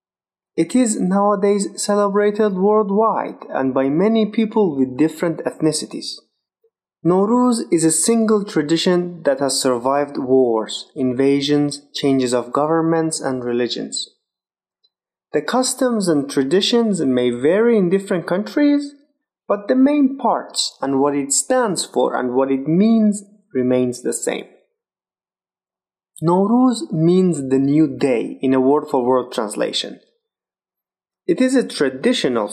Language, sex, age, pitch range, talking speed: English, male, 30-49, 140-220 Hz, 125 wpm